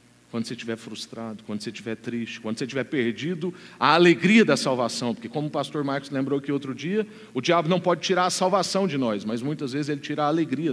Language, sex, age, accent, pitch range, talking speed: Portuguese, male, 50-69, Brazilian, 115-160 Hz, 230 wpm